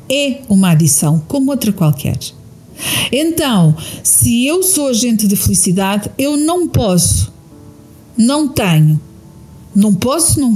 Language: Portuguese